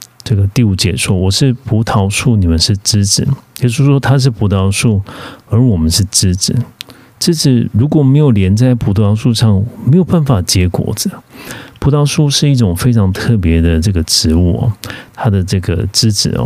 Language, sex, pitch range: Korean, male, 95-120 Hz